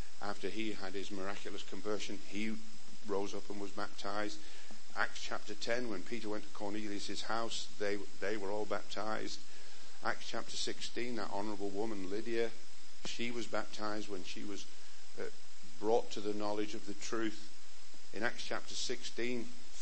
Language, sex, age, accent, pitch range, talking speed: English, male, 50-69, British, 100-110 Hz, 155 wpm